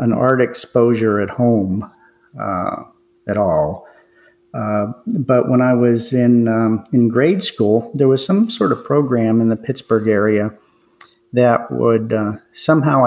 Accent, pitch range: American, 110-125 Hz